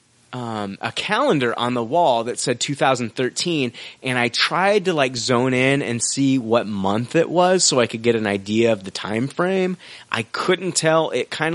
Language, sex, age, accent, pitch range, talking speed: English, male, 30-49, American, 100-135 Hz, 190 wpm